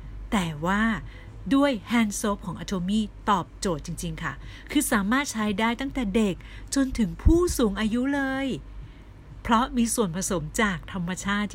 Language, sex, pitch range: Thai, female, 155-220 Hz